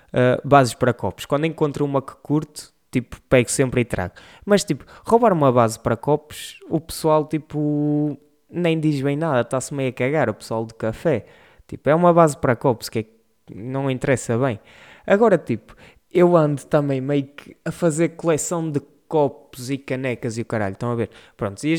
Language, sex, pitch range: Portuguese, male, 130-175 Hz